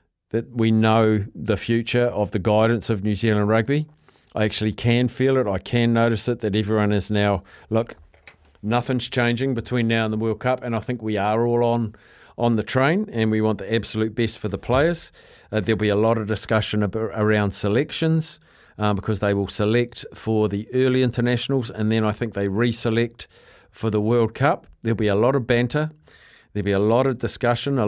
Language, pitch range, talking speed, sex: English, 105-125 Hz, 200 wpm, male